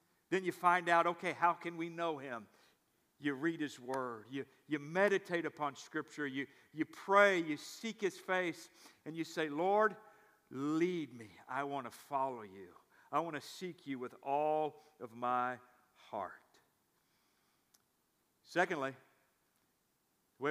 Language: English